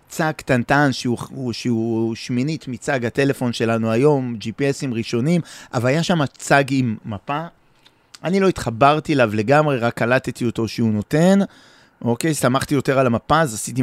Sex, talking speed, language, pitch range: male, 150 wpm, Hebrew, 115-150 Hz